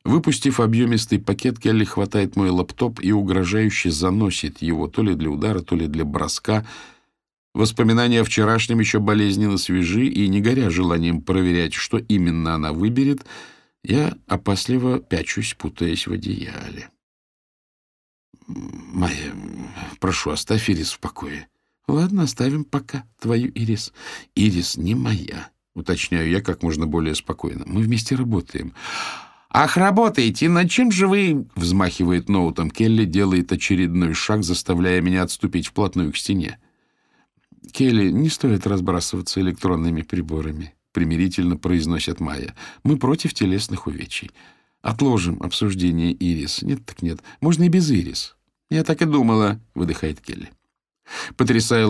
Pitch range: 90-115 Hz